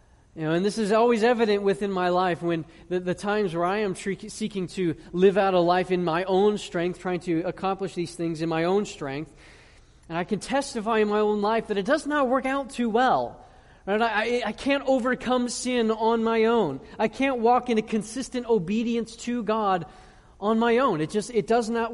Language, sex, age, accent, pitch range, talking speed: English, male, 30-49, American, 165-225 Hz, 215 wpm